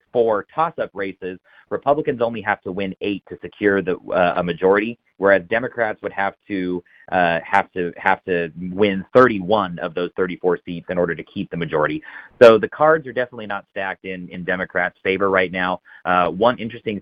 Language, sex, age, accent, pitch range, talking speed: English, male, 30-49, American, 90-110 Hz, 185 wpm